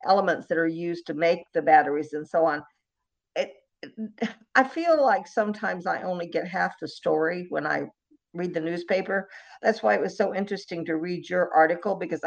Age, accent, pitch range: 50-69, American, 170-220 Hz